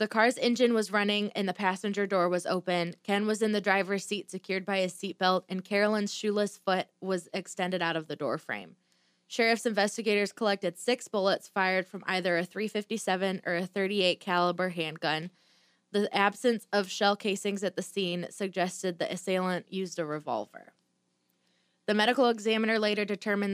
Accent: American